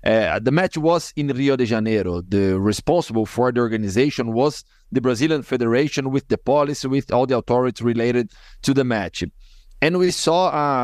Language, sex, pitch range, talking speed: English, male, 110-135 Hz, 175 wpm